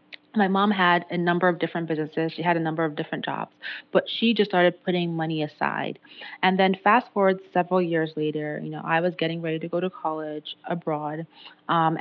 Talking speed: 205 wpm